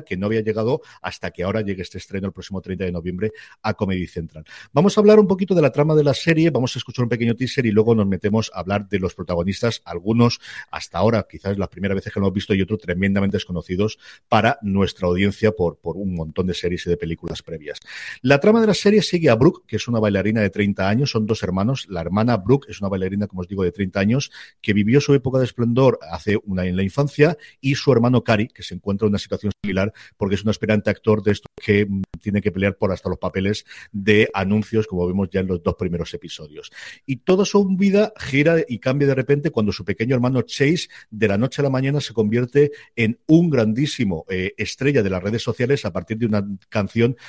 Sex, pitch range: male, 100-130 Hz